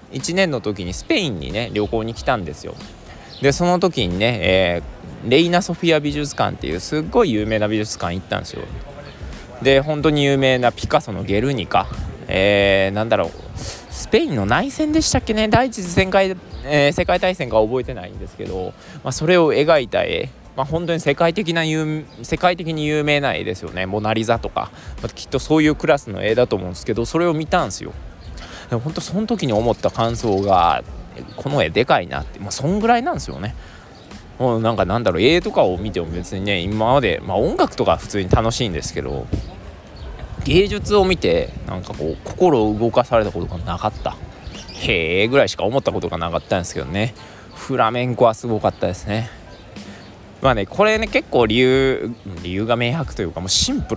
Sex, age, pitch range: male, 20-39, 100-155 Hz